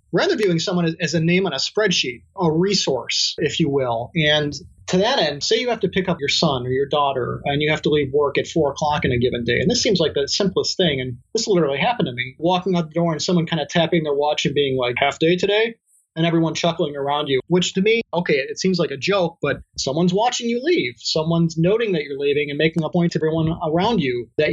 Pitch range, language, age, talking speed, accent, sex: 145-175 Hz, English, 30-49, 255 wpm, American, male